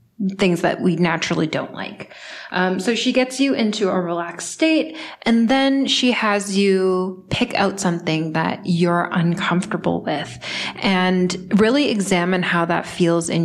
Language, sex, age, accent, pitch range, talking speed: English, female, 20-39, American, 170-200 Hz, 150 wpm